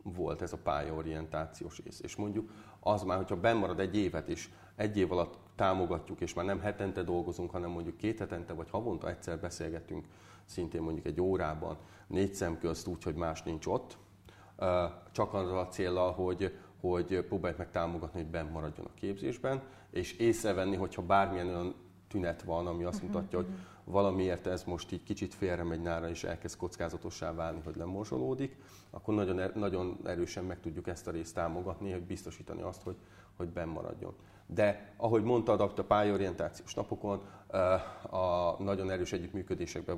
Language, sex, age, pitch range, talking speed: Hungarian, male, 30-49, 85-100 Hz, 160 wpm